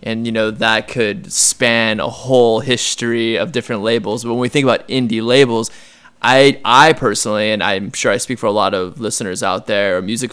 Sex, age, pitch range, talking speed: male, 20-39, 110-130 Hz, 210 wpm